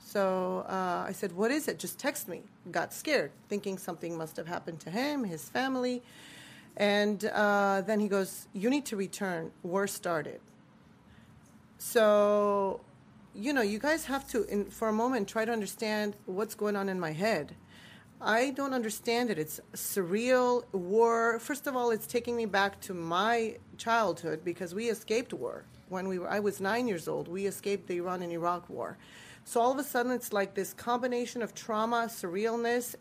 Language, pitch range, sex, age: English, 195-240 Hz, female, 40-59